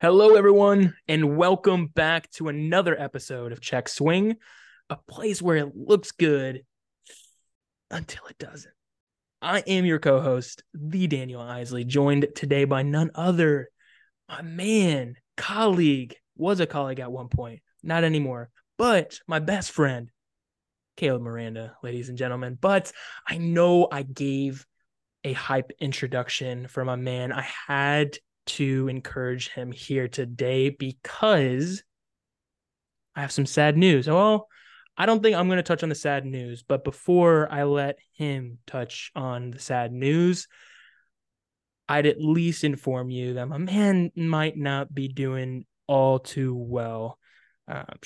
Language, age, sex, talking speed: English, 20-39, male, 140 wpm